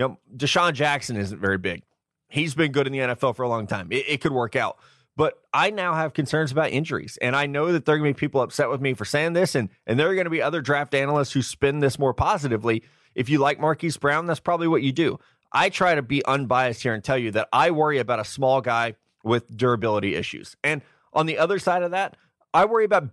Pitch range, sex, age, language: 120-160 Hz, male, 20-39, English